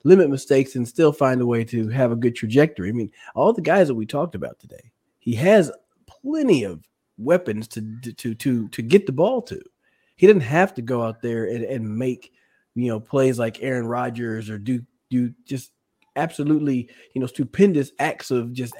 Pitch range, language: 115-145 Hz, English